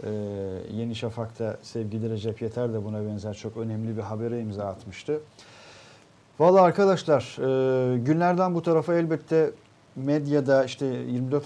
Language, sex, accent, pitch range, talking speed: Turkish, male, native, 115-160 Hz, 130 wpm